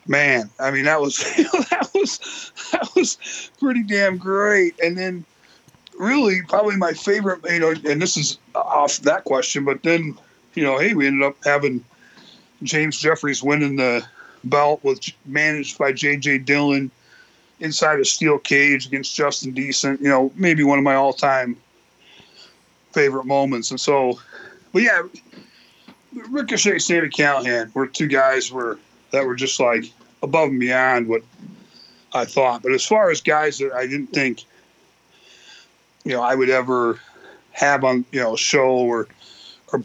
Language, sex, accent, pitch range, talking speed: English, male, American, 130-180 Hz, 155 wpm